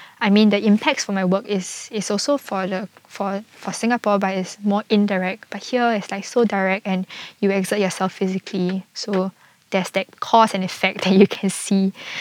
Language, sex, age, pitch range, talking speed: English, female, 10-29, 185-210 Hz, 195 wpm